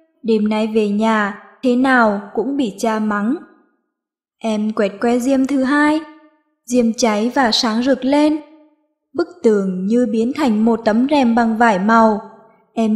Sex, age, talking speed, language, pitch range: female, 20-39, 155 wpm, Vietnamese, 210-285 Hz